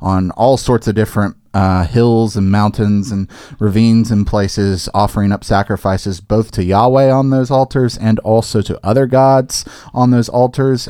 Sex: male